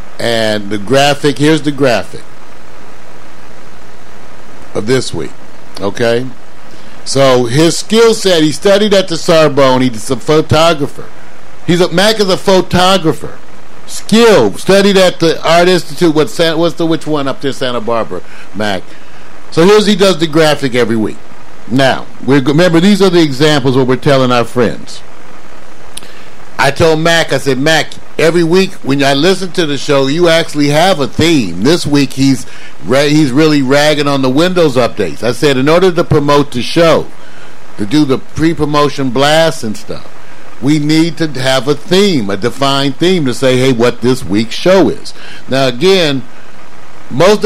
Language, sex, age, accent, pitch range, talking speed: English, male, 60-79, American, 130-175 Hz, 165 wpm